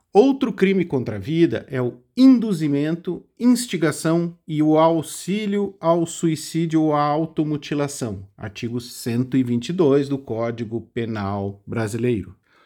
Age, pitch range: 50-69, 130-180 Hz